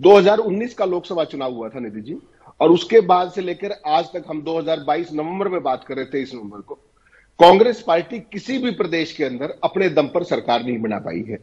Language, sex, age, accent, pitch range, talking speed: Hindi, male, 50-69, native, 150-210 Hz, 215 wpm